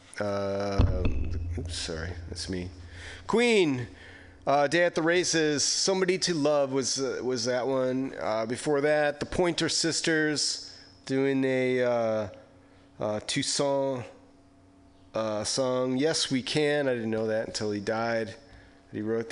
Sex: male